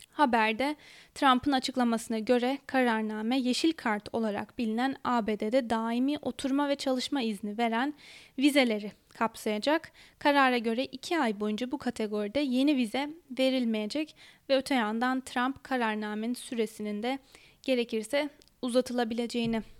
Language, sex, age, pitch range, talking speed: Turkish, female, 10-29, 225-275 Hz, 110 wpm